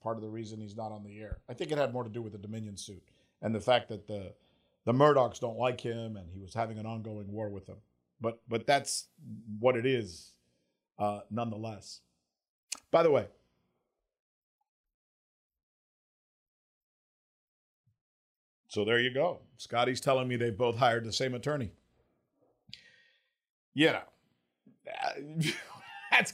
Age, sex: 50-69, male